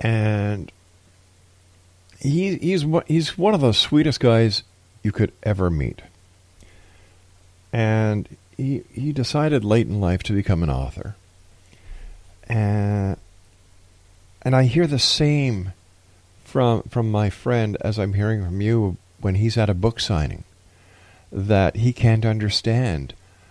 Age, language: 50-69, English